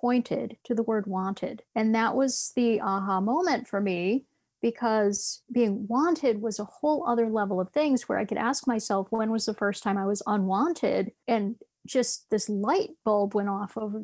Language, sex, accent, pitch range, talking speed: English, female, American, 205-255 Hz, 190 wpm